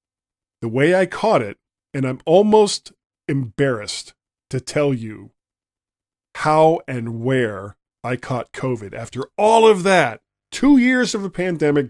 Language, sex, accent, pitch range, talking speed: English, male, American, 110-155 Hz, 135 wpm